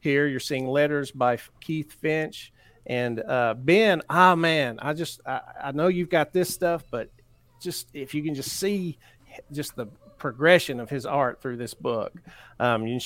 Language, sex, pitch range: English, male, 120-155 Hz